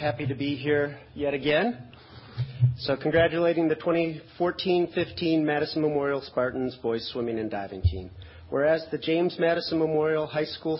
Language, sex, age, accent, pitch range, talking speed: English, male, 40-59, American, 135-160 Hz, 140 wpm